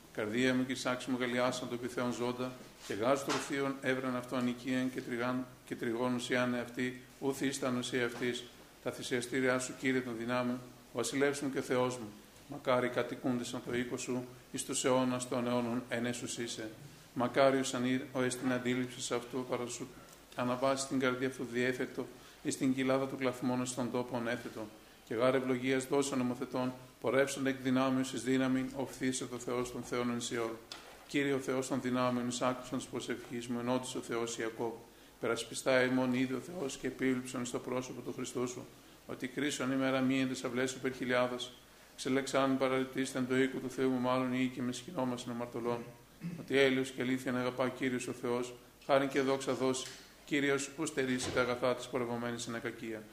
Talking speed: 150 wpm